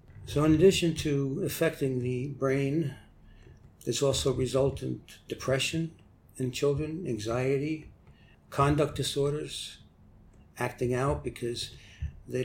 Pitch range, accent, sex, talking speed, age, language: 115-140 Hz, American, male, 105 wpm, 60-79, English